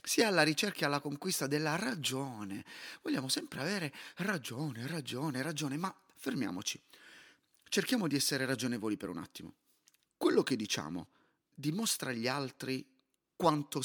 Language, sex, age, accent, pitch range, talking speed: Italian, male, 30-49, native, 125-185 Hz, 130 wpm